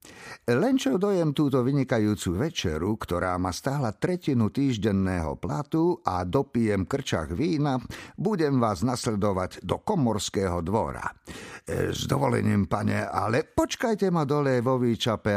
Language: Slovak